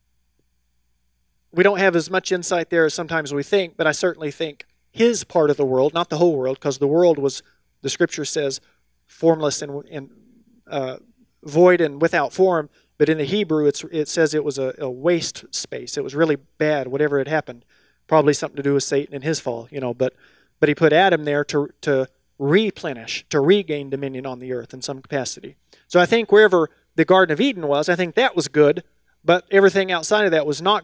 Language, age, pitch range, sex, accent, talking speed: English, 40-59, 140-175 Hz, male, American, 210 wpm